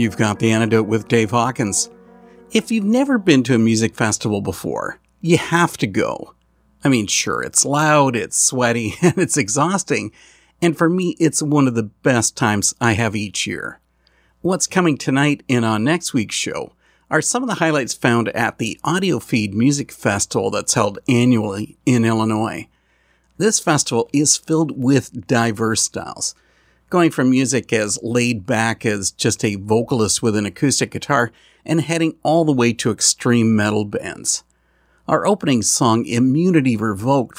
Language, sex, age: English, male, 50-69